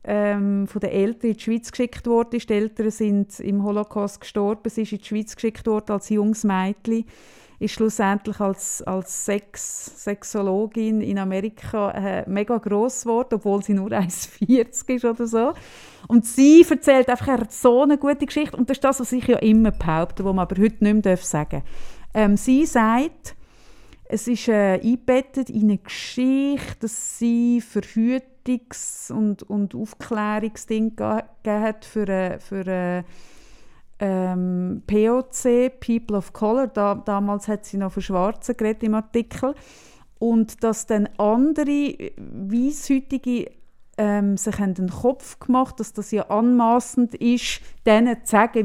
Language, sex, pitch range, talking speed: German, female, 205-245 Hz, 150 wpm